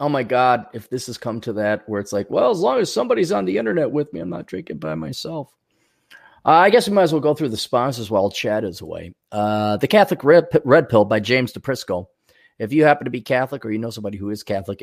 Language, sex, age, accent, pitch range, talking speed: English, male, 30-49, American, 100-130 Hz, 260 wpm